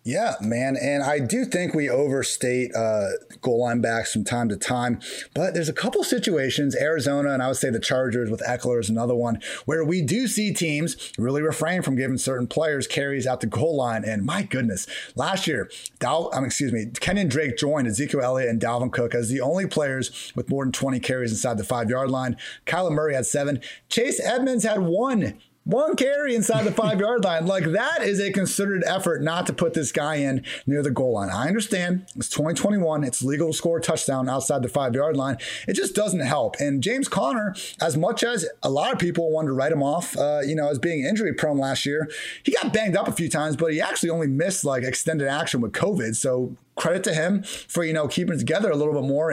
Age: 30-49